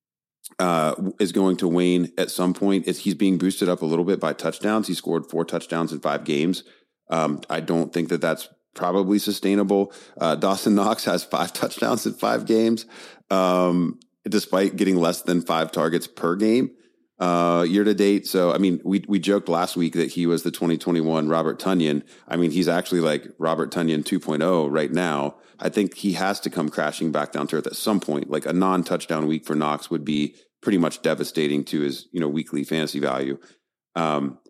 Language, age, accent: English, 30-49, American